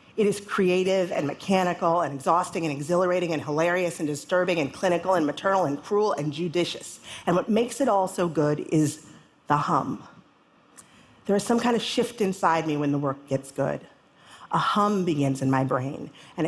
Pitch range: 155-190 Hz